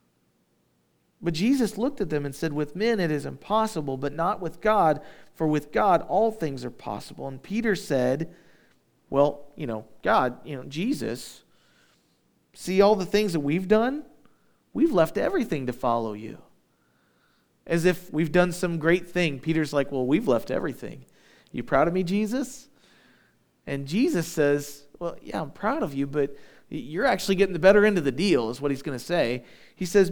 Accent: American